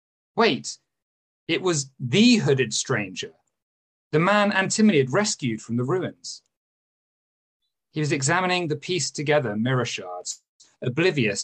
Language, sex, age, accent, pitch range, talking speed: English, male, 40-59, British, 120-195 Hz, 120 wpm